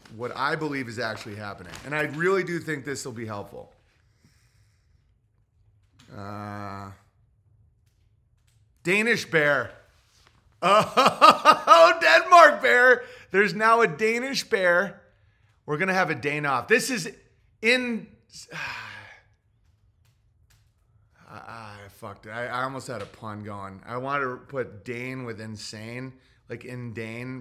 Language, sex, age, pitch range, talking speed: English, male, 30-49, 110-165 Hz, 125 wpm